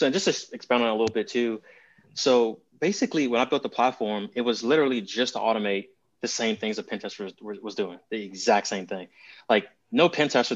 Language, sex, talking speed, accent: English, male, 205 wpm, American